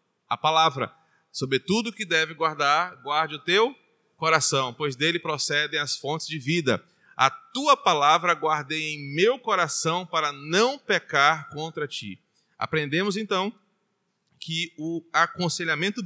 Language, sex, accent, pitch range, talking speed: Portuguese, male, Brazilian, 150-195 Hz, 125 wpm